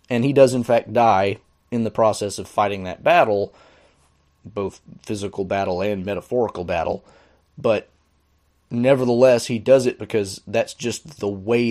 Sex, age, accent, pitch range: male, 30-49, American, 90-115 Hz